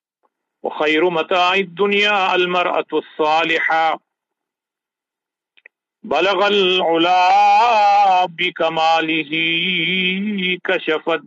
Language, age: English, 50-69